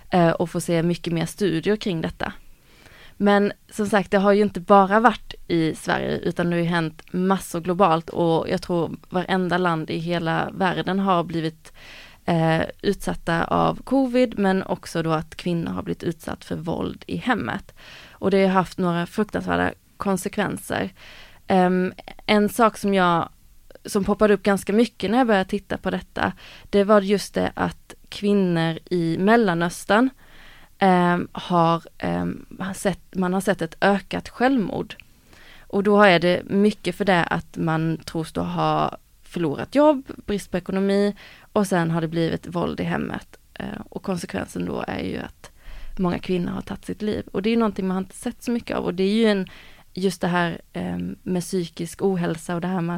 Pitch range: 170-205 Hz